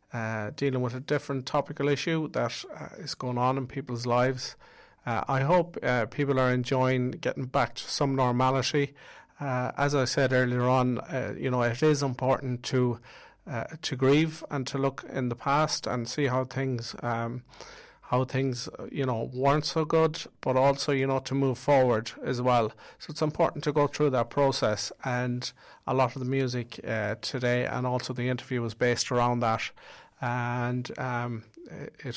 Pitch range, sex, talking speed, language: 120-140 Hz, male, 180 wpm, English